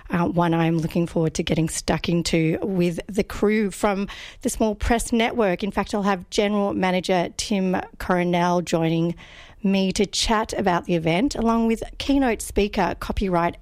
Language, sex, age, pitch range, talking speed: English, female, 40-59, 170-220 Hz, 165 wpm